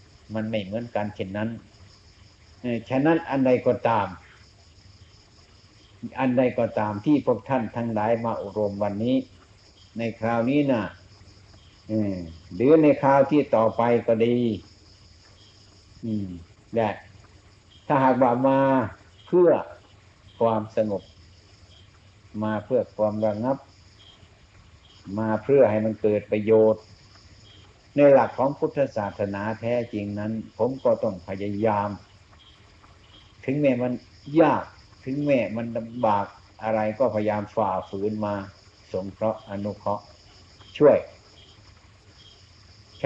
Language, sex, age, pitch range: Thai, male, 60-79, 100-115 Hz